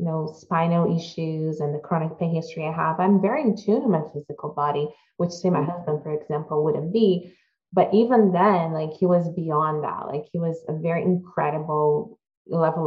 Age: 20-39